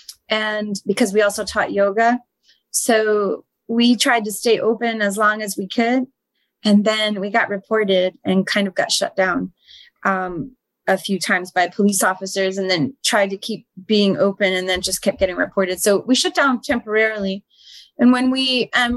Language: English